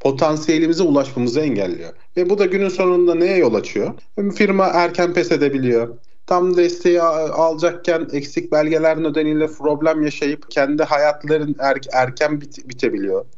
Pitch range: 130-180 Hz